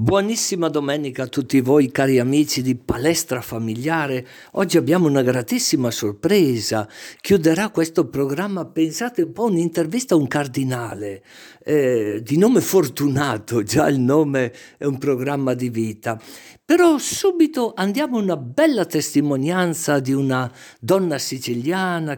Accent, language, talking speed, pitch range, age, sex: native, Italian, 130 wpm, 130-170 Hz, 50-69, male